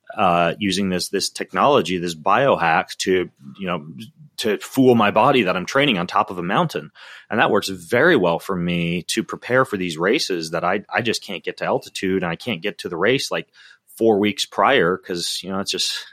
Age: 30-49